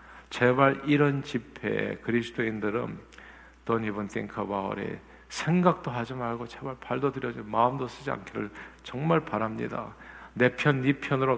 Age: 50-69